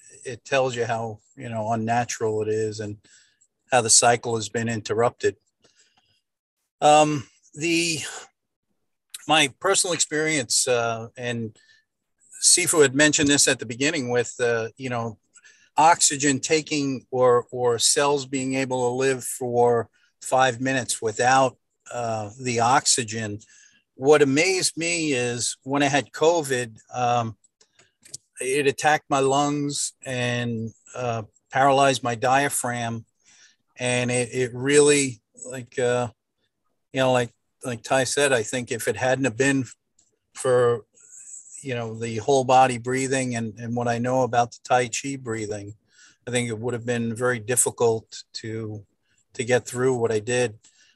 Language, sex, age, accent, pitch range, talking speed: English, male, 50-69, American, 115-135 Hz, 140 wpm